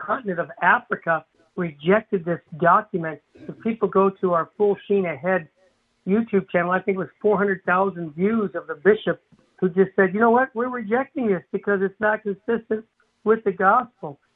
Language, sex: English, male